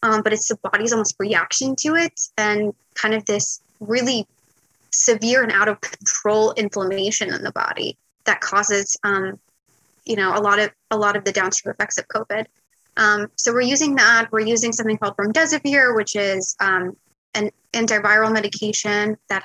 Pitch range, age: 210-250 Hz, 20-39